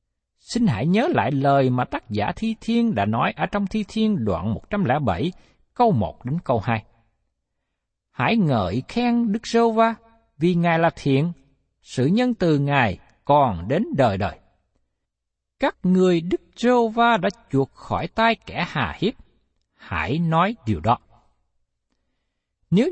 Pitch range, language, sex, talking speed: 135-230 Hz, Vietnamese, male, 145 wpm